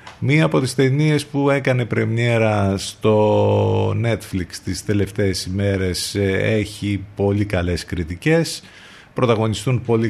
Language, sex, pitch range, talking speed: Greek, male, 90-115 Hz, 105 wpm